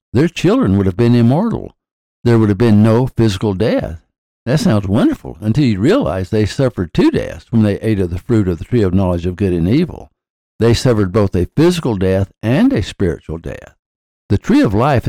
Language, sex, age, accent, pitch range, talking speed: English, male, 60-79, American, 95-130 Hz, 205 wpm